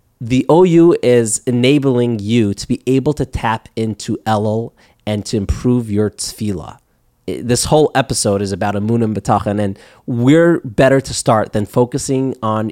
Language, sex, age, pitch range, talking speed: English, male, 30-49, 110-140 Hz, 155 wpm